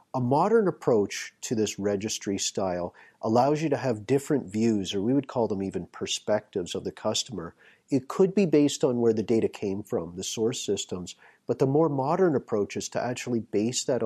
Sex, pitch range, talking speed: male, 100-130 Hz, 195 wpm